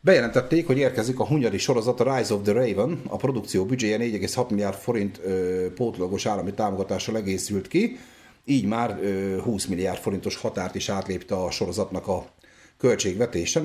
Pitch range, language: 100-125 Hz, Hungarian